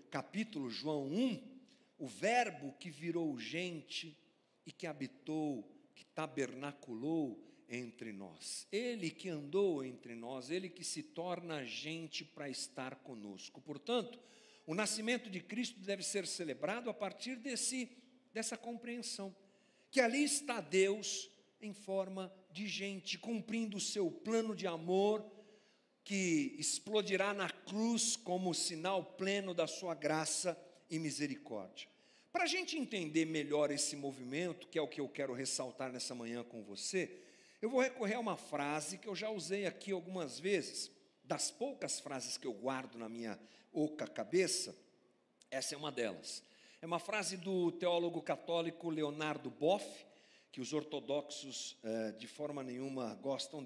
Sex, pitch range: male, 150-215 Hz